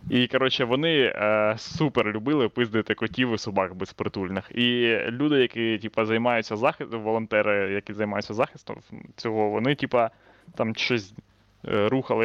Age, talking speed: 20-39, 135 wpm